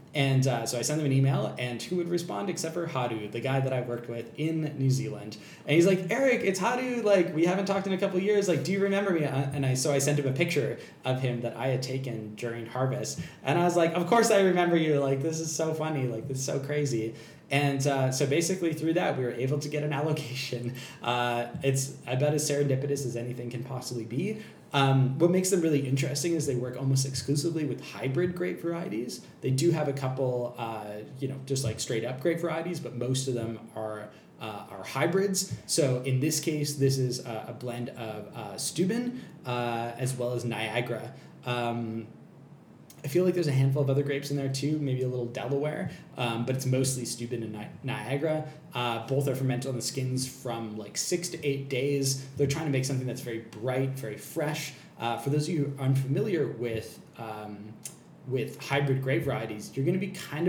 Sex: male